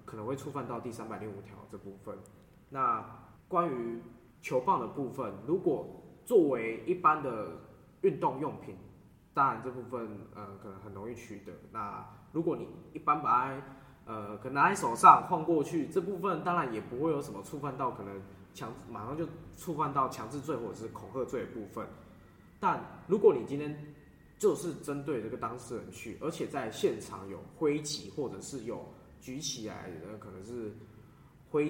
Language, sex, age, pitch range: Chinese, male, 10-29, 110-150 Hz